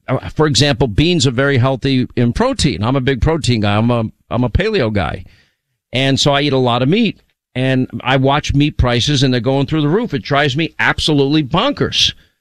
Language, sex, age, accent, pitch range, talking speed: English, male, 50-69, American, 125-155 Hz, 210 wpm